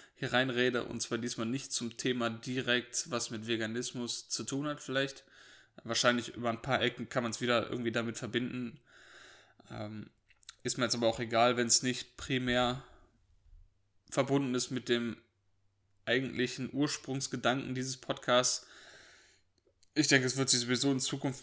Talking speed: 155 wpm